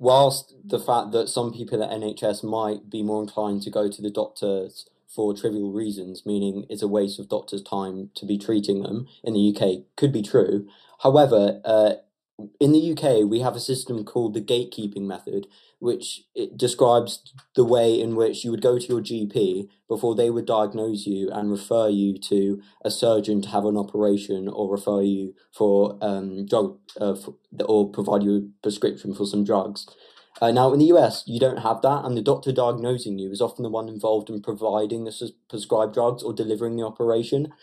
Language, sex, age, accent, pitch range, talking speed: English, male, 20-39, British, 100-125 Hz, 200 wpm